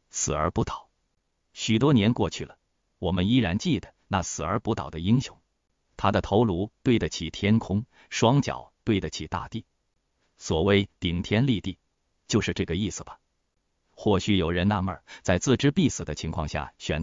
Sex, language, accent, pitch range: male, Chinese, native, 85-110 Hz